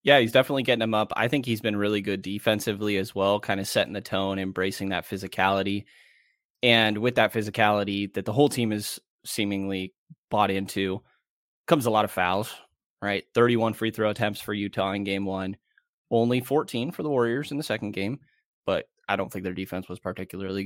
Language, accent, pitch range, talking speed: English, American, 95-115 Hz, 195 wpm